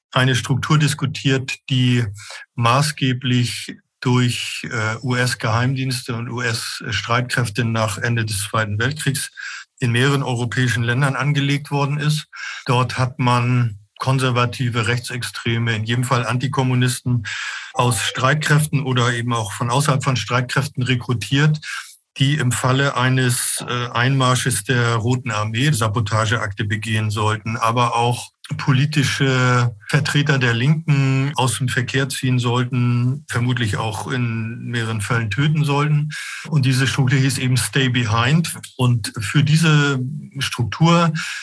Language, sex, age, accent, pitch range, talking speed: German, male, 50-69, German, 120-140 Hz, 115 wpm